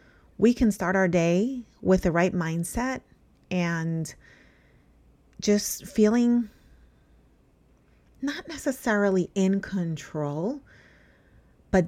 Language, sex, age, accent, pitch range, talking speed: English, female, 30-49, American, 175-220 Hz, 85 wpm